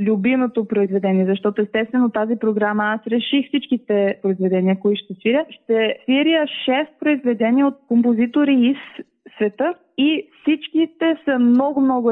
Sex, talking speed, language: female, 125 wpm, Bulgarian